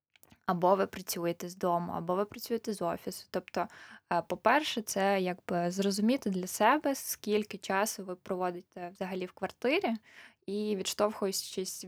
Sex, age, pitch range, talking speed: female, 20-39, 180-220 Hz, 130 wpm